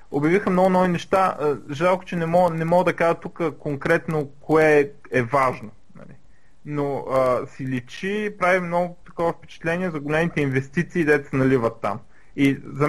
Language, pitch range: Bulgarian, 130-170 Hz